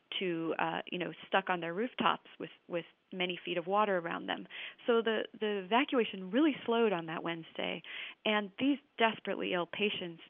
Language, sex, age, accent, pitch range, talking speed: English, female, 30-49, American, 180-220 Hz, 175 wpm